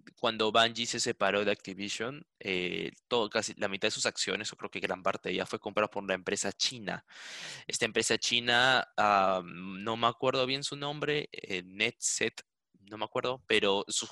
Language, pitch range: Spanish, 95-120 Hz